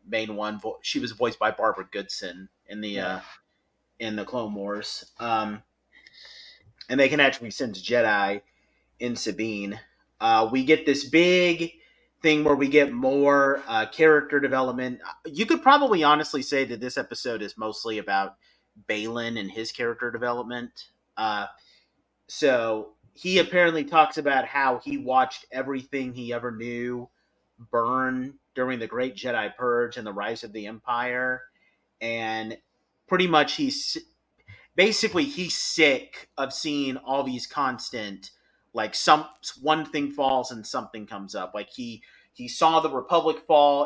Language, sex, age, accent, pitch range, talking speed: English, male, 30-49, American, 115-145 Hz, 145 wpm